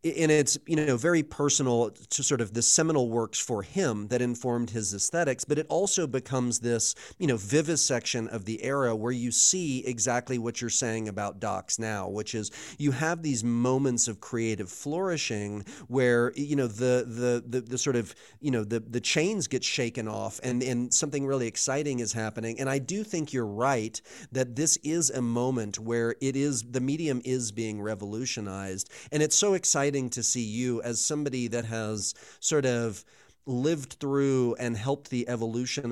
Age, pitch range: 30-49, 115-140 Hz